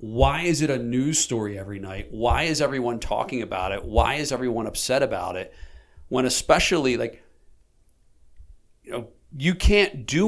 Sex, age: male, 40-59